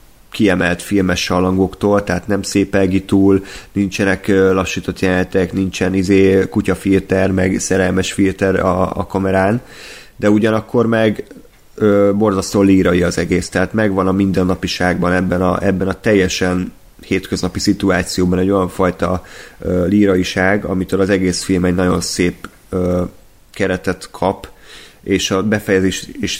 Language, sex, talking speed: Hungarian, male, 130 wpm